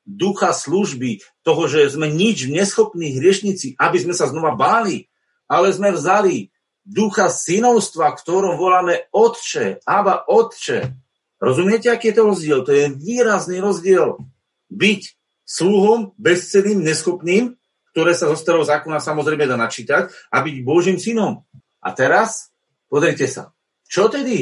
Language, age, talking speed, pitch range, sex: Slovak, 40-59, 135 wpm, 155-205 Hz, male